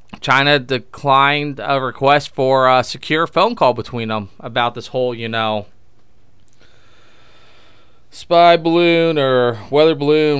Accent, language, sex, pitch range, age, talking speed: American, English, male, 110-135 Hz, 20-39, 120 wpm